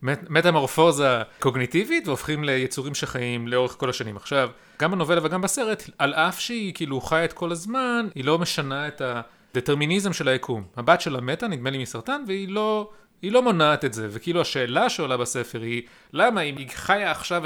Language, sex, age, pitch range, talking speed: Hebrew, male, 30-49, 130-195 Hz, 165 wpm